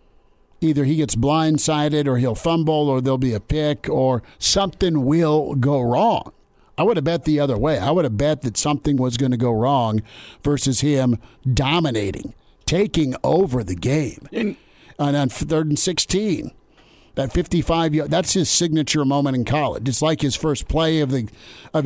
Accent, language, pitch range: American, English, 125-150 Hz